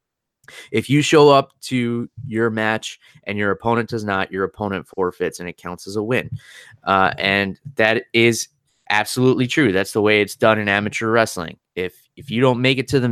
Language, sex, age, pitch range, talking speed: English, male, 20-39, 95-120 Hz, 195 wpm